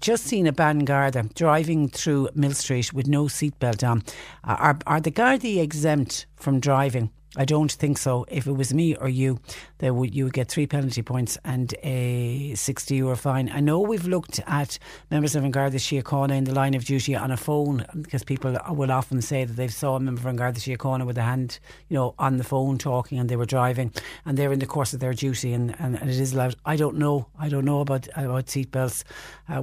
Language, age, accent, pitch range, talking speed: English, 60-79, Irish, 125-140 Hz, 220 wpm